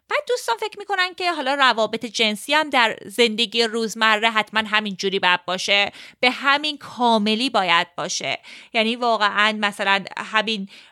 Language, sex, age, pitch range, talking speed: Persian, female, 30-49, 215-295 Hz, 145 wpm